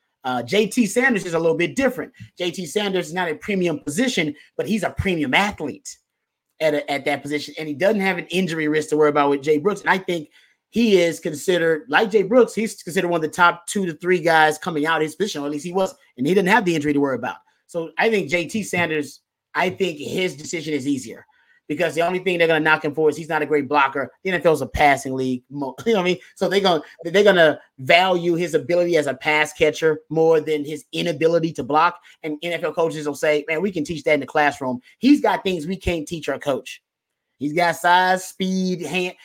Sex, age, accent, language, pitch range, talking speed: male, 30-49, American, English, 150-185 Hz, 240 wpm